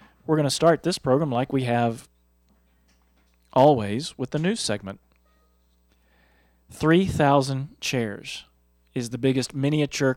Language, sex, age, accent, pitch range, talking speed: English, male, 40-59, American, 105-130 Hz, 120 wpm